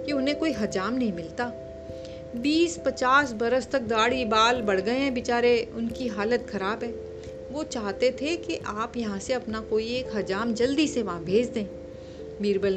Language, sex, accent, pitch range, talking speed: Hindi, female, native, 185-255 Hz, 175 wpm